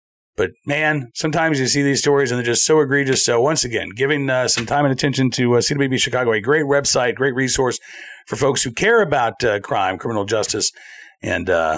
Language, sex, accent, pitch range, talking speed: English, male, American, 130-180 Hz, 210 wpm